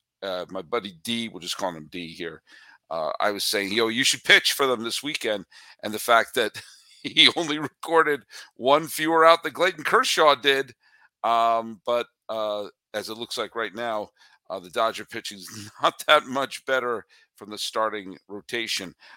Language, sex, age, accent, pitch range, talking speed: English, male, 50-69, American, 115-145 Hz, 180 wpm